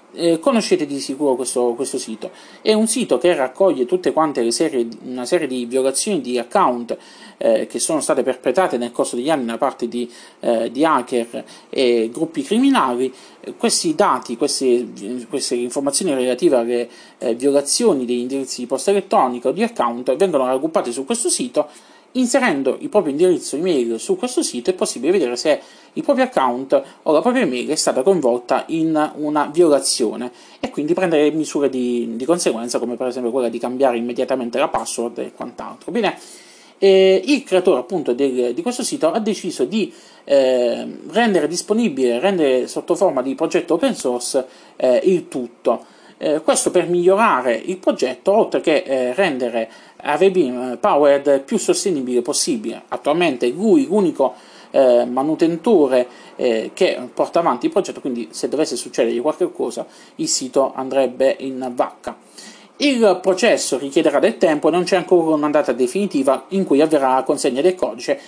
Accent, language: native, Italian